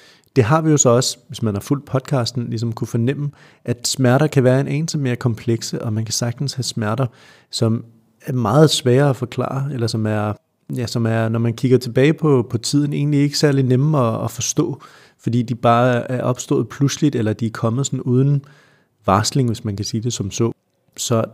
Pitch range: 115-140 Hz